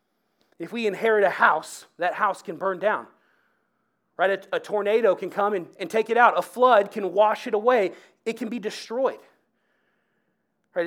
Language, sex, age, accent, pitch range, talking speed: English, male, 30-49, American, 170-225 Hz, 175 wpm